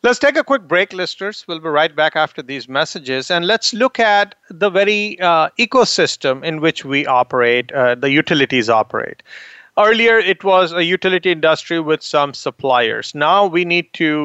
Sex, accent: male, Indian